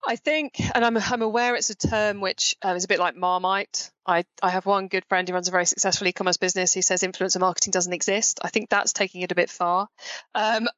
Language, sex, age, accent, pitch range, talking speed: English, female, 20-39, British, 185-230 Hz, 245 wpm